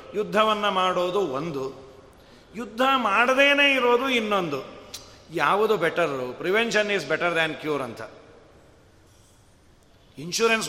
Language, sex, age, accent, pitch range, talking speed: Kannada, male, 40-59, native, 170-230 Hz, 90 wpm